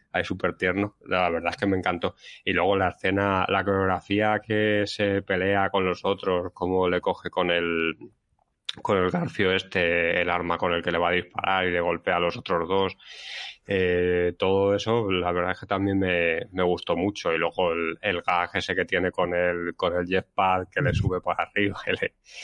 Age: 20-39